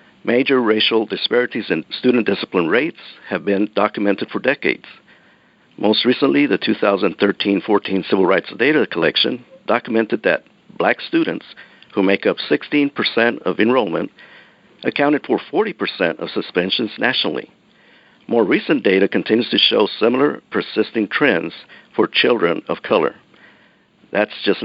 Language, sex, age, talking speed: English, male, 60-79, 125 wpm